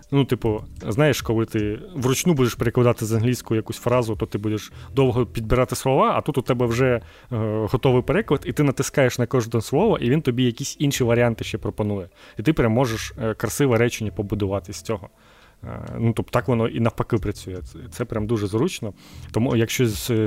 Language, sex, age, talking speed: Ukrainian, male, 30-49, 185 wpm